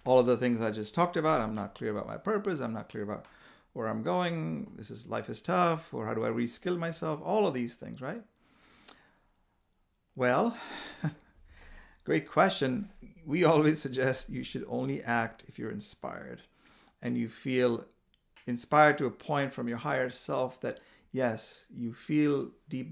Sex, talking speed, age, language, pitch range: male, 175 wpm, 50-69, English, 110-140 Hz